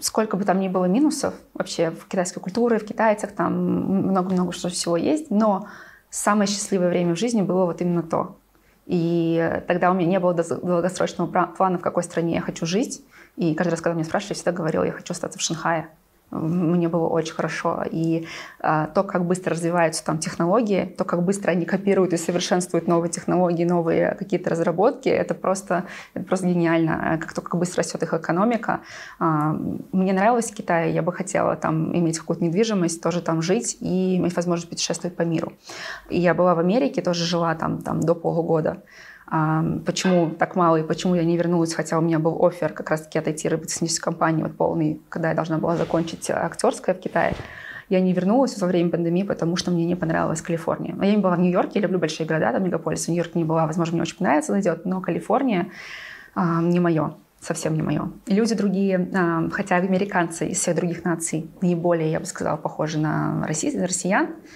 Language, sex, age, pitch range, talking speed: Russian, female, 20-39, 165-190 Hz, 195 wpm